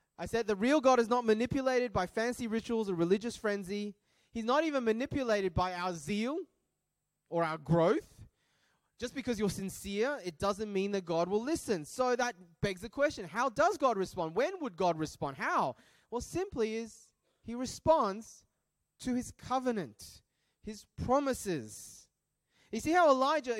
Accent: Australian